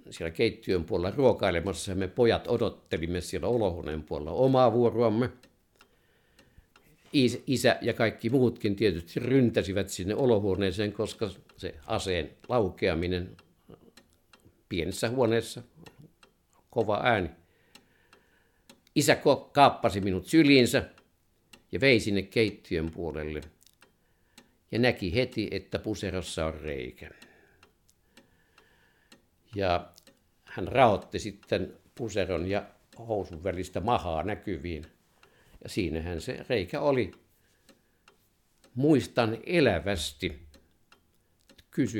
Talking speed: 90 wpm